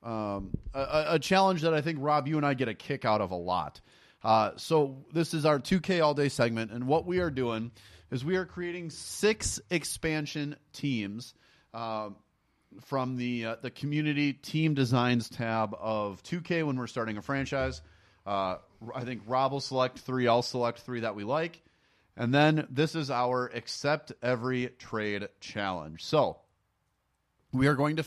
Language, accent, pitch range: English, American, 110-150 Hz